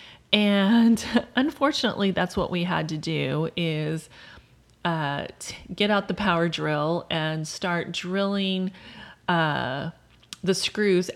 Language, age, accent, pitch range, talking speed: English, 30-49, American, 160-205 Hz, 115 wpm